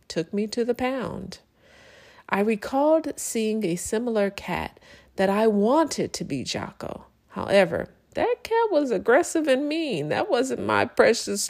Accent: American